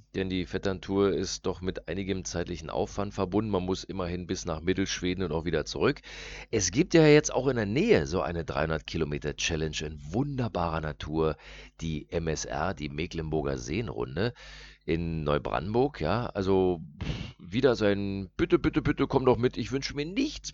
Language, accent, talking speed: German, German, 160 wpm